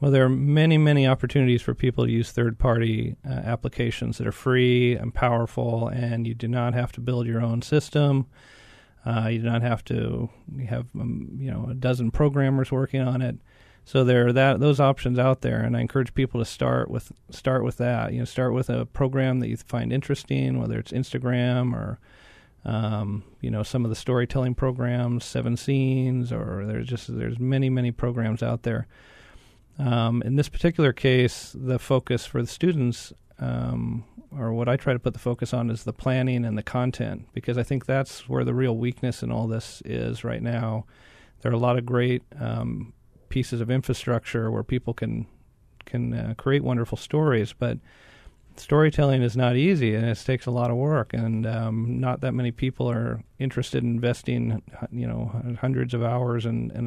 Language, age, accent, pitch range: English, 40-59, American, 115-130 Hz